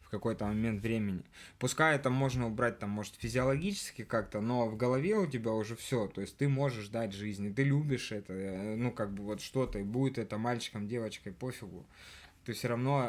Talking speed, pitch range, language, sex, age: 190 wpm, 110-135 Hz, Russian, male, 20-39